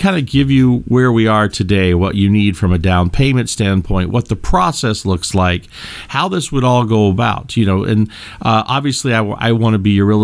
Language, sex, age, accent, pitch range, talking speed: English, male, 50-69, American, 100-130 Hz, 225 wpm